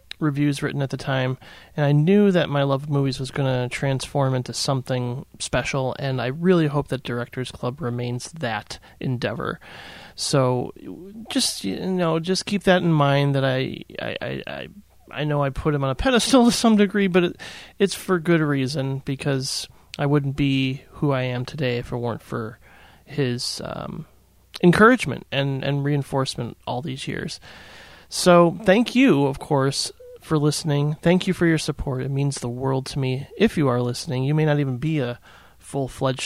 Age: 30-49